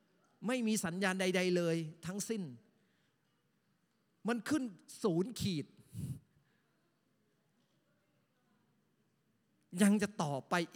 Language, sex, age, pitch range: Thai, male, 30-49, 150-225 Hz